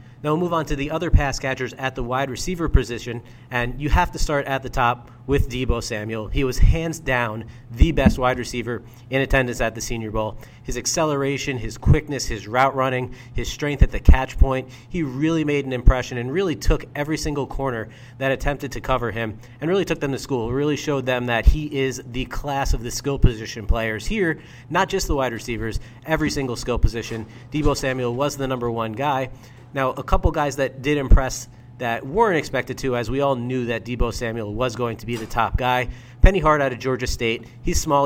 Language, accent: English, American